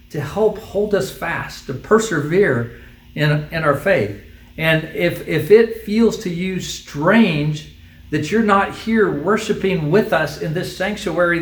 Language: English